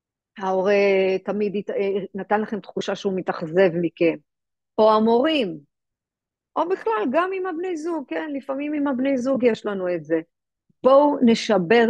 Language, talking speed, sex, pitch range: Hebrew, 135 wpm, female, 190-260 Hz